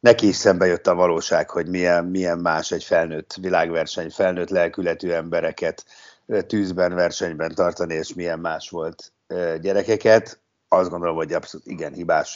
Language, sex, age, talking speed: Hungarian, male, 60-79, 145 wpm